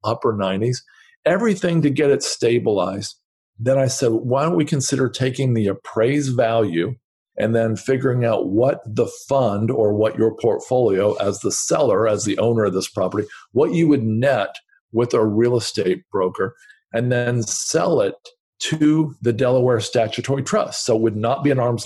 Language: English